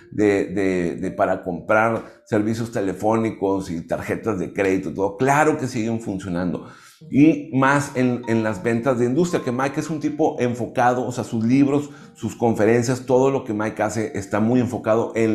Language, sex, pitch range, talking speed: Spanish, male, 110-155 Hz, 175 wpm